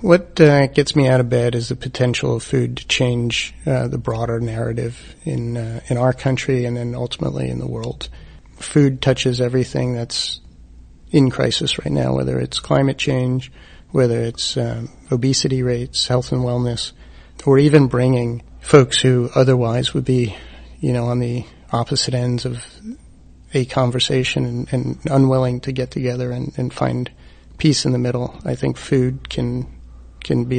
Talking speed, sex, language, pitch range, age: 165 wpm, male, English, 110-130 Hz, 40-59